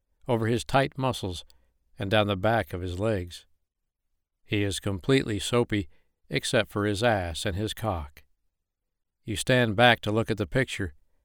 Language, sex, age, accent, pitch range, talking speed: English, male, 60-79, American, 80-110 Hz, 160 wpm